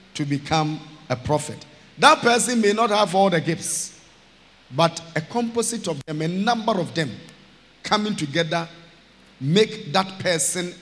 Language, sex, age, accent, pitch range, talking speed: English, male, 50-69, South African, 135-185 Hz, 140 wpm